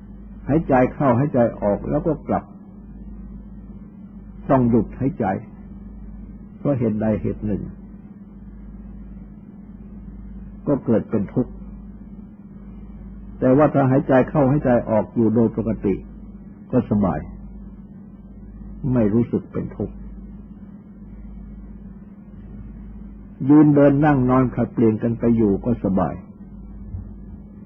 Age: 60-79